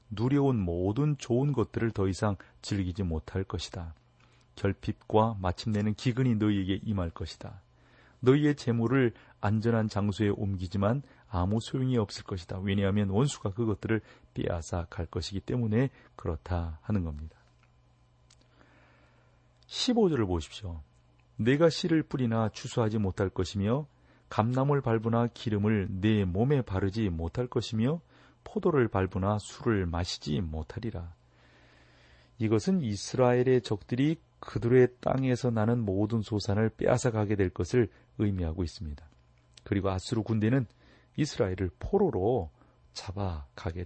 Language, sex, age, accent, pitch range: Korean, male, 40-59, native, 90-125 Hz